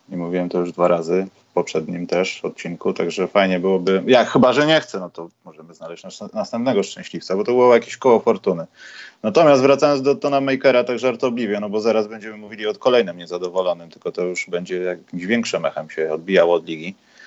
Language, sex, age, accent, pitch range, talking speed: Polish, male, 30-49, native, 95-125 Hz, 195 wpm